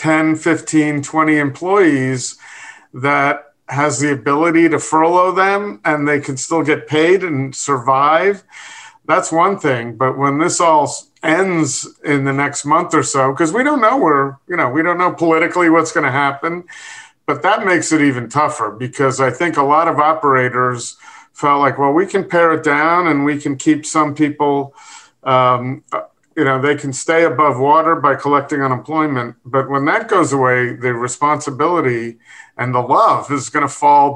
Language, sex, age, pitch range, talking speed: English, male, 50-69, 135-165 Hz, 175 wpm